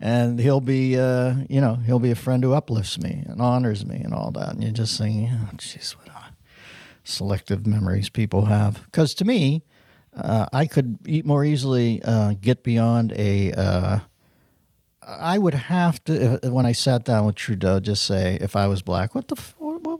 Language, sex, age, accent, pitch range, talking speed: English, male, 60-79, American, 105-130 Hz, 200 wpm